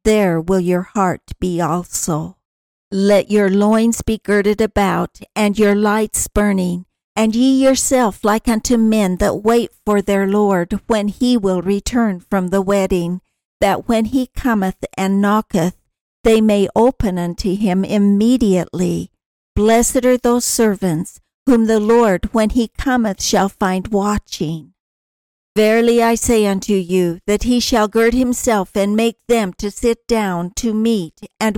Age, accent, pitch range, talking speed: 60-79, American, 195-230 Hz, 150 wpm